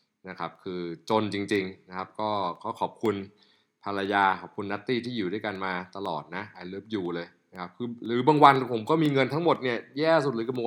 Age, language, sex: 20-39, Thai, male